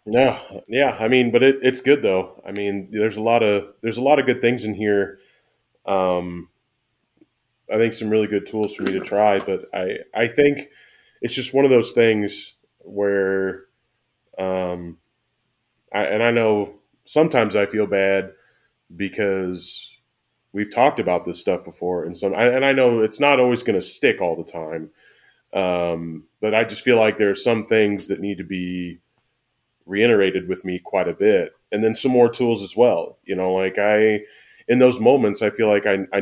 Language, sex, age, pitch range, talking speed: English, male, 20-39, 95-120 Hz, 190 wpm